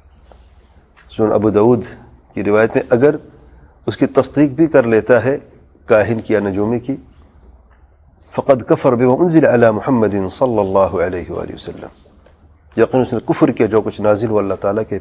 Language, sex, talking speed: English, male, 125 wpm